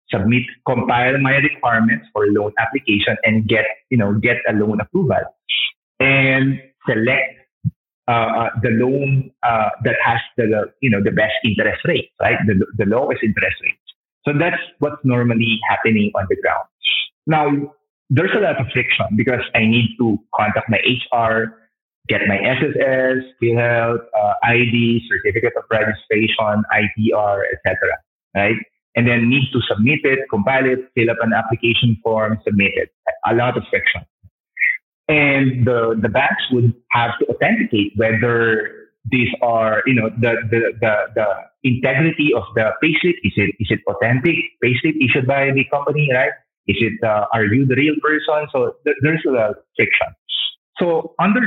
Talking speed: 160 wpm